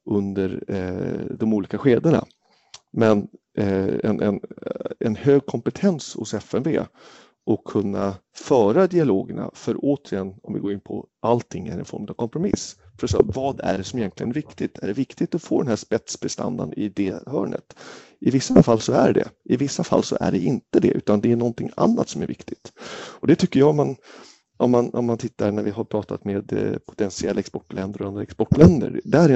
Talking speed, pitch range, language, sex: 190 wpm, 100-135 Hz, Swedish, male